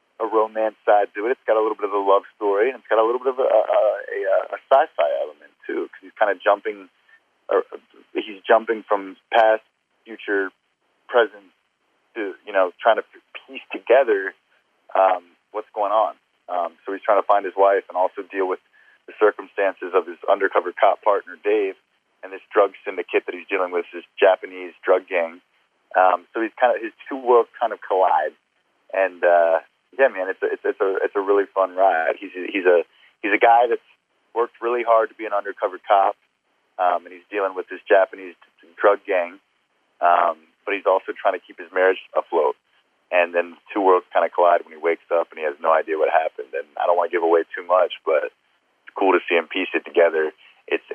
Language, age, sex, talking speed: English, 30-49, male, 210 wpm